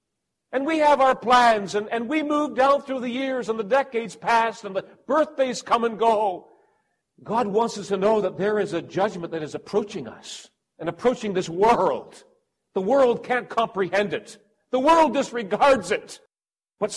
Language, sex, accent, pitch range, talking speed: English, male, American, 165-230 Hz, 180 wpm